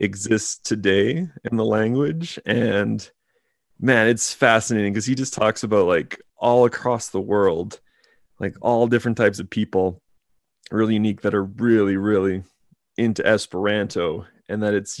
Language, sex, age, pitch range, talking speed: English, male, 30-49, 100-115 Hz, 145 wpm